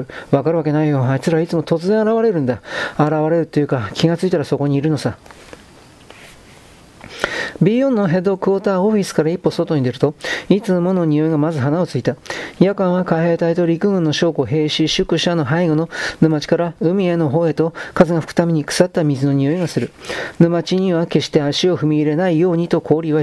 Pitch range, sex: 150-180 Hz, male